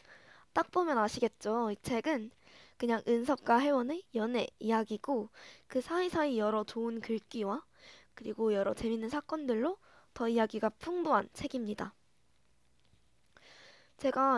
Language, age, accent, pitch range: Korean, 20-39, native, 225-295 Hz